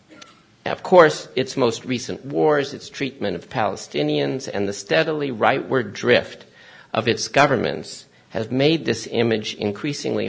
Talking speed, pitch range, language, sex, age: 135 wpm, 110-150 Hz, English, male, 50-69